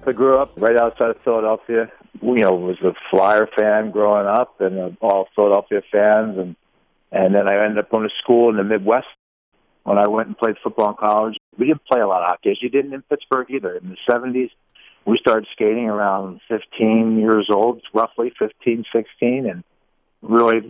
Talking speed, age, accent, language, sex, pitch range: 195 wpm, 50-69, American, English, male, 105-120 Hz